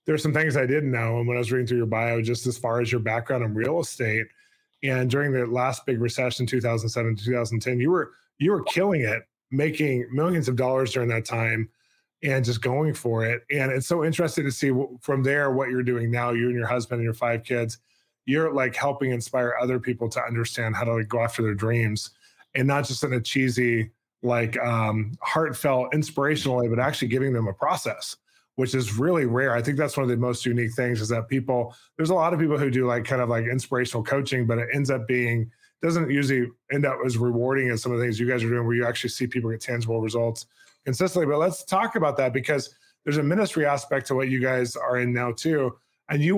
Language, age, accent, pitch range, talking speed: English, 20-39, American, 120-140 Hz, 235 wpm